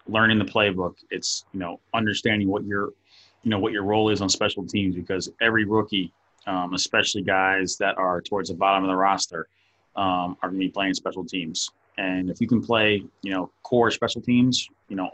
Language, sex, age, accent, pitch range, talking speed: English, male, 30-49, American, 95-110 Hz, 205 wpm